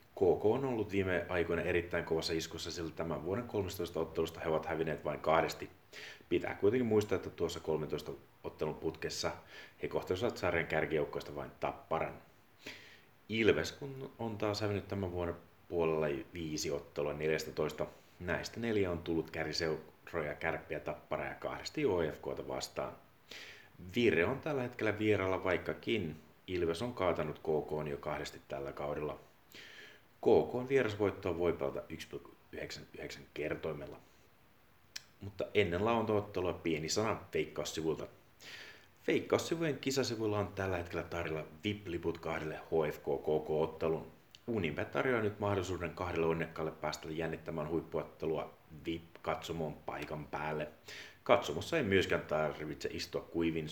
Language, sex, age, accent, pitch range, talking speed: Finnish, male, 30-49, native, 80-105 Hz, 120 wpm